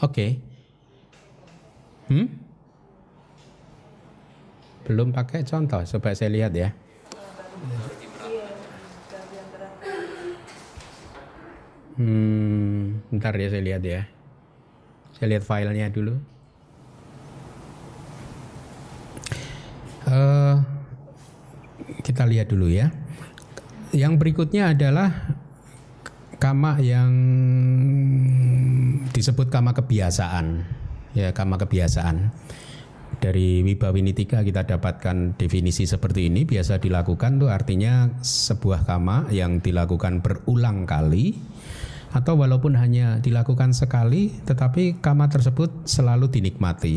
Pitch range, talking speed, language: 100-140 Hz, 80 wpm, Indonesian